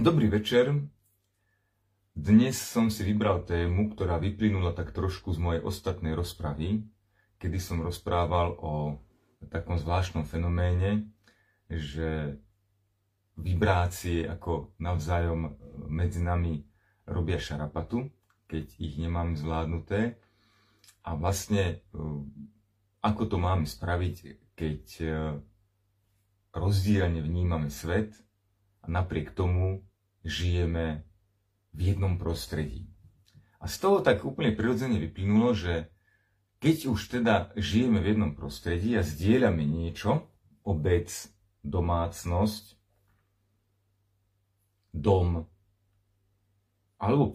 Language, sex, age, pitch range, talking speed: Slovak, male, 30-49, 85-105 Hz, 95 wpm